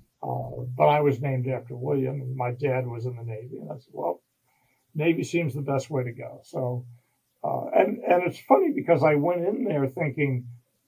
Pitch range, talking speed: 125-150 Hz, 200 wpm